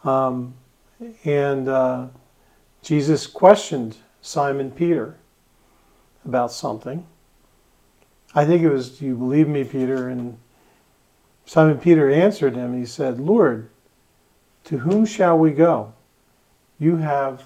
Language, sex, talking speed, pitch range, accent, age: English, male, 115 wpm, 125-155 Hz, American, 50-69